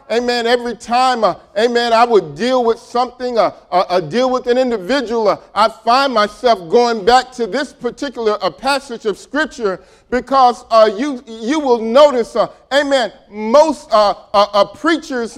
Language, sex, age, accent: English, male, 40-59, American